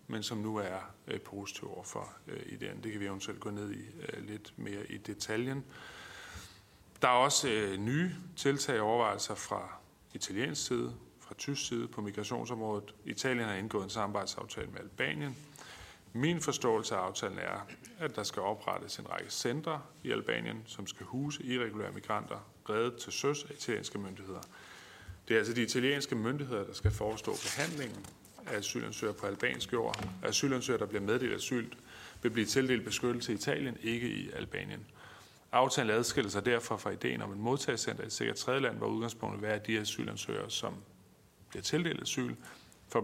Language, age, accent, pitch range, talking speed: Danish, 30-49, native, 105-125 Hz, 170 wpm